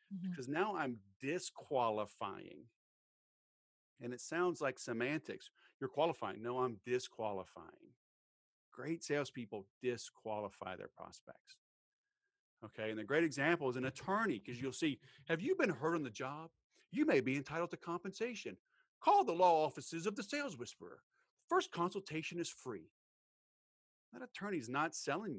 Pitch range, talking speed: 135-200 Hz, 140 wpm